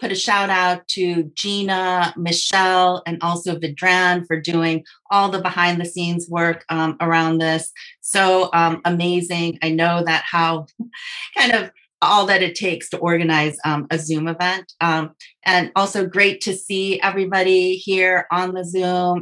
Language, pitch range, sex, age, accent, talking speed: English, 165-185 Hz, female, 30-49, American, 160 wpm